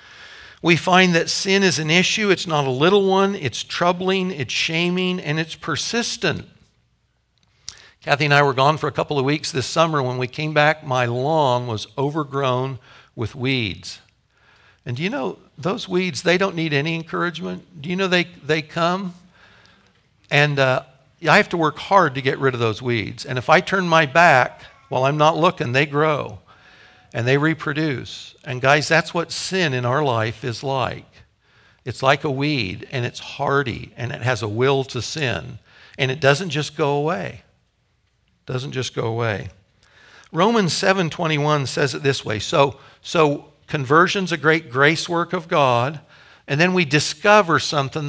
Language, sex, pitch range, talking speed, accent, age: English, male, 130-170 Hz, 175 wpm, American, 60-79